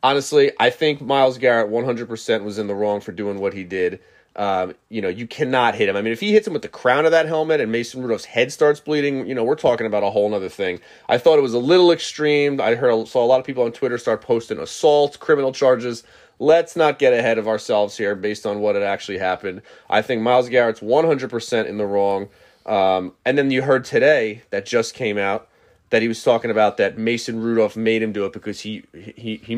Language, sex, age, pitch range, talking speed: English, male, 30-49, 105-145 Hz, 240 wpm